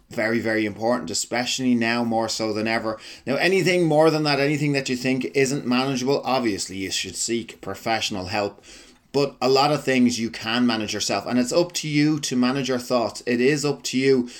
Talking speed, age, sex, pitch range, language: 205 wpm, 30-49, male, 110-130 Hz, English